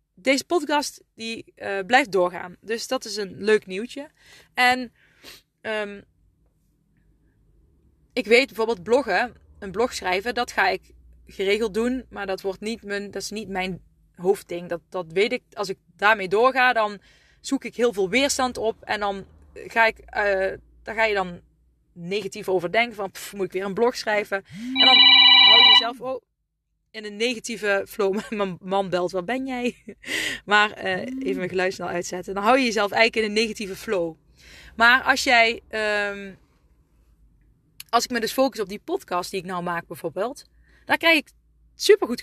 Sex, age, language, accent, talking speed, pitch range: female, 20-39, Dutch, Dutch, 170 wpm, 195-255 Hz